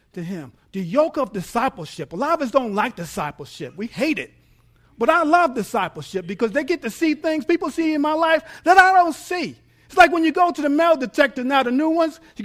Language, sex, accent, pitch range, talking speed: English, male, American, 170-280 Hz, 235 wpm